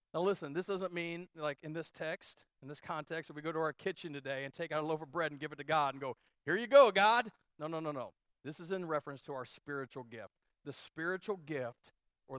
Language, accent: English, American